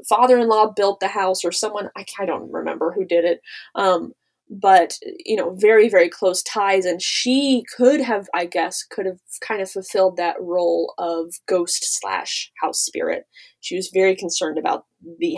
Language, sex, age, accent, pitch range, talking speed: English, female, 20-39, American, 185-275 Hz, 170 wpm